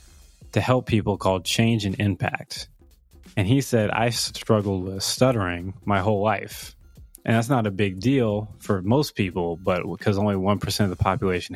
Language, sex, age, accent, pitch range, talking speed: English, male, 20-39, American, 95-110 Hz, 170 wpm